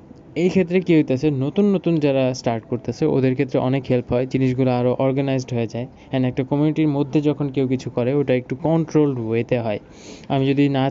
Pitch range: 125-145 Hz